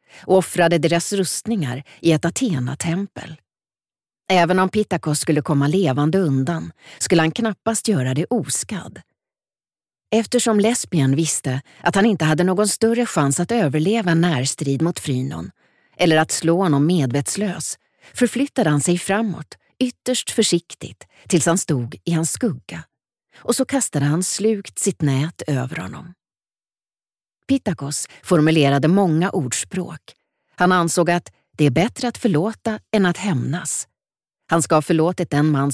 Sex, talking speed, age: female, 140 wpm, 40-59